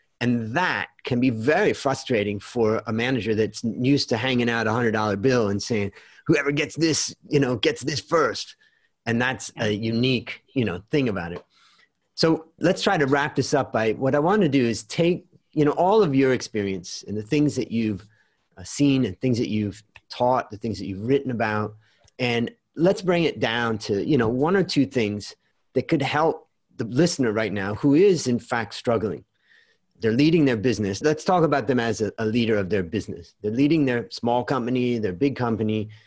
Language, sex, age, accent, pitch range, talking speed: English, male, 30-49, American, 110-145 Hz, 200 wpm